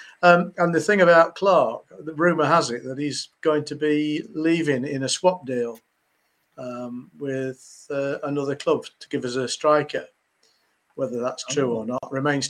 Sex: male